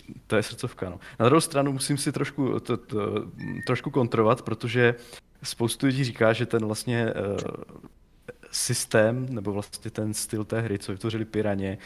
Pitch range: 100-115 Hz